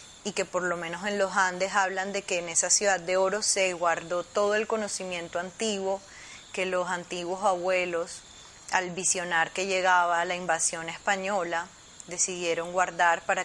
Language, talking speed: Spanish, 160 wpm